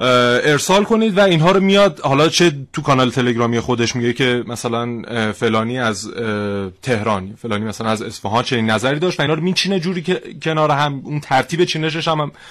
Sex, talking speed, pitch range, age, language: male, 175 wpm, 115-170 Hz, 30-49, Persian